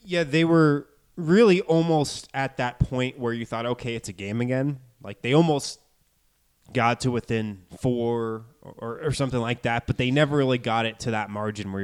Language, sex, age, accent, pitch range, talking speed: English, male, 20-39, American, 110-140 Hz, 200 wpm